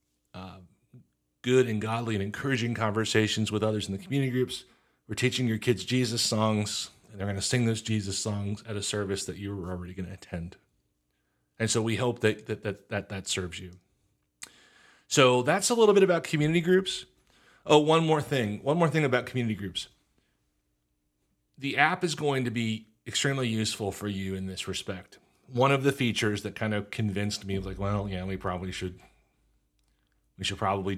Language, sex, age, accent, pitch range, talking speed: English, male, 30-49, American, 95-120 Hz, 190 wpm